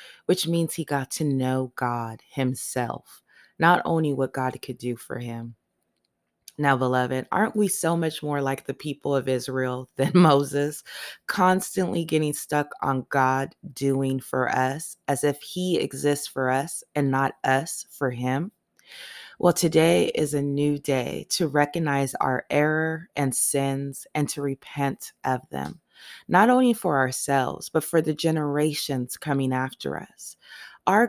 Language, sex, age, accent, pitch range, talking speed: English, female, 20-39, American, 130-165 Hz, 150 wpm